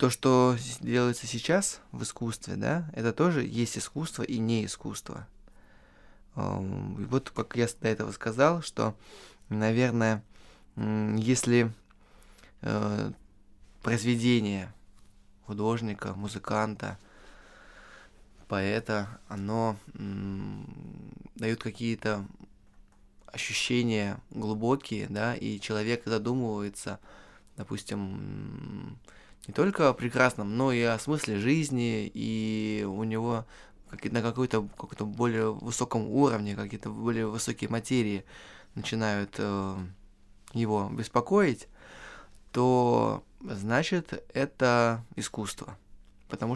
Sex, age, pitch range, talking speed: male, 20-39, 105-120 Hz, 90 wpm